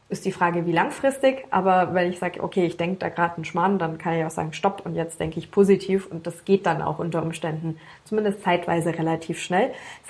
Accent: German